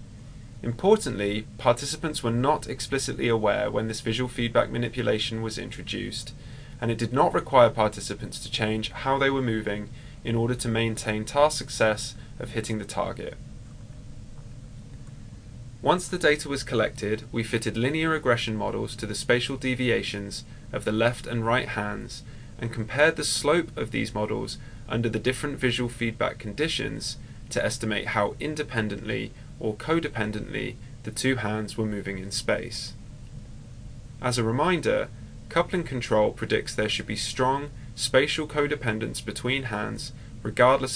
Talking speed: 140 wpm